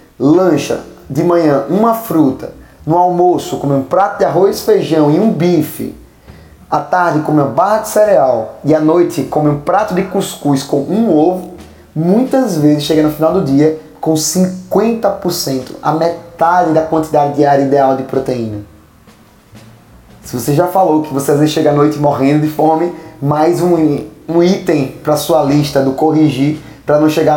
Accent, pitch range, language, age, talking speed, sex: Brazilian, 145-185 Hz, Portuguese, 20-39, 175 wpm, male